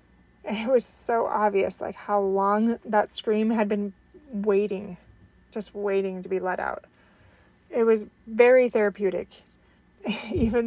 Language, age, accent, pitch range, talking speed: English, 20-39, American, 200-225 Hz, 130 wpm